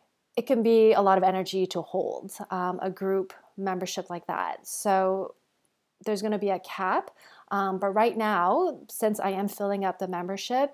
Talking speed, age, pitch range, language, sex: 185 wpm, 30-49, 190-215 Hz, English, female